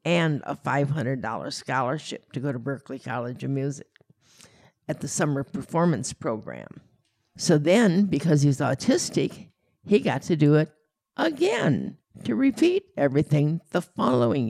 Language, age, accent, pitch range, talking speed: English, 60-79, American, 135-175 Hz, 140 wpm